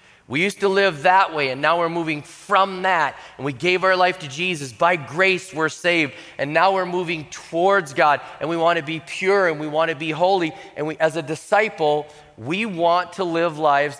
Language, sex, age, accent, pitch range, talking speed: English, male, 30-49, American, 155-180 Hz, 220 wpm